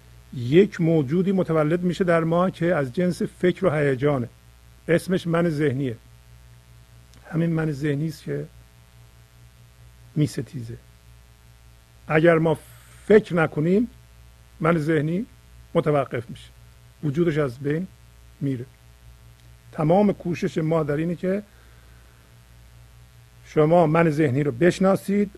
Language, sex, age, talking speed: Persian, male, 50-69, 100 wpm